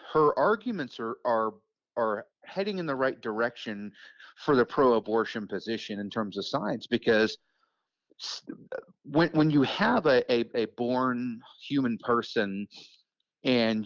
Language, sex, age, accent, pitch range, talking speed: English, male, 40-59, American, 110-140 Hz, 135 wpm